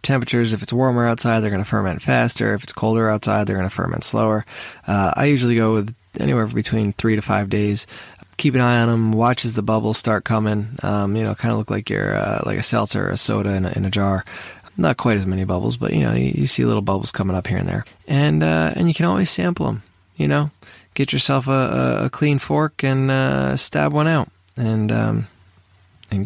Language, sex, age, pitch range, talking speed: English, male, 20-39, 95-125 Hz, 235 wpm